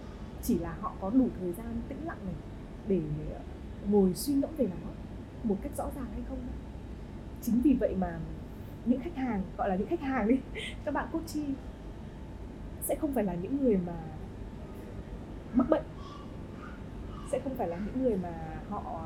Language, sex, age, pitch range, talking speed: Vietnamese, female, 20-39, 180-270 Hz, 175 wpm